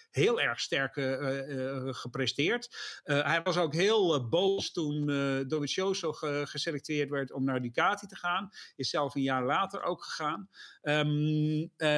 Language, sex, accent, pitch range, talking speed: English, male, Dutch, 145-195 Hz, 165 wpm